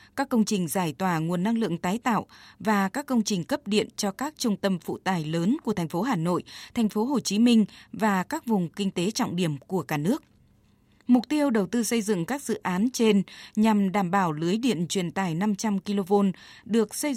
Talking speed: 225 wpm